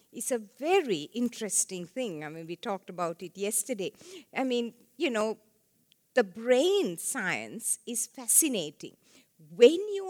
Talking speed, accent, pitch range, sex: 135 wpm, Indian, 195-275 Hz, female